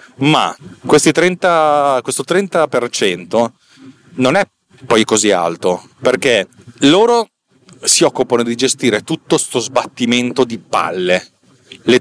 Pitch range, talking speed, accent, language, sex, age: 115-150 Hz, 105 wpm, native, Italian, male, 30-49